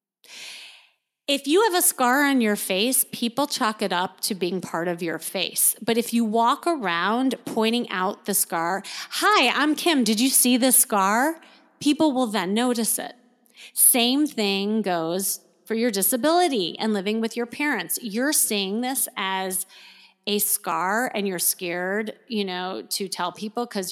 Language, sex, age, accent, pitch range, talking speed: English, female, 30-49, American, 205-295 Hz, 165 wpm